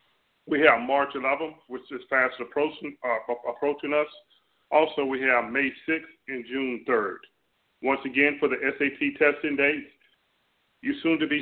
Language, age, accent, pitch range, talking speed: English, 40-59, American, 130-155 Hz, 145 wpm